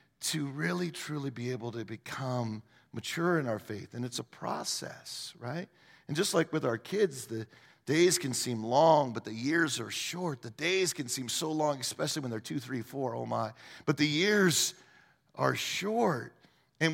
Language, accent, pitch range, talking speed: English, American, 125-175 Hz, 185 wpm